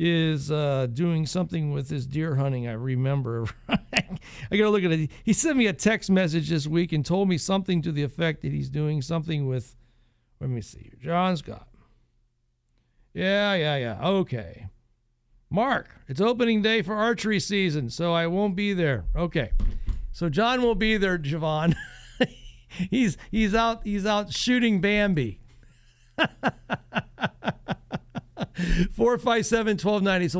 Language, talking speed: English, 140 wpm